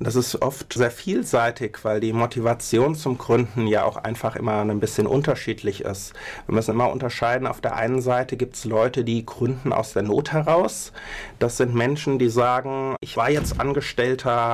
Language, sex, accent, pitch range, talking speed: German, male, German, 110-130 Hz, 180 wpm